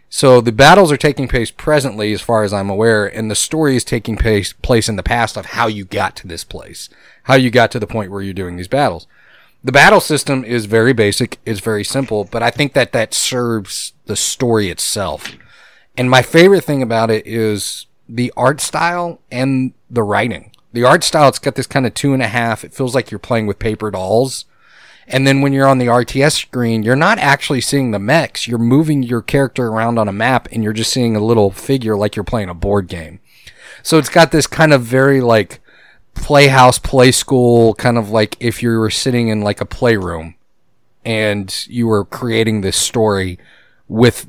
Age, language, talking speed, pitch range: 30-49, English, 210 wpm, 105-130 Hz